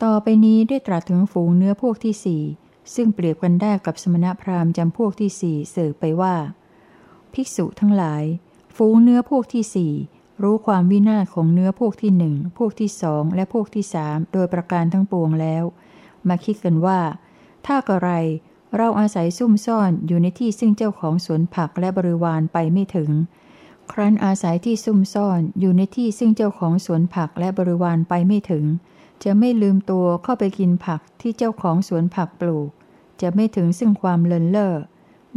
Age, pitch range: 60-79, 170-210 Hz